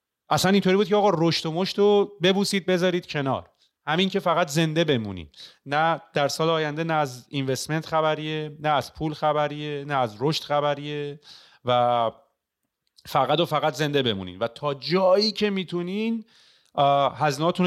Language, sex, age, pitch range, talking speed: Persian, male, 30-49, 120-165 Hz, 155 wpm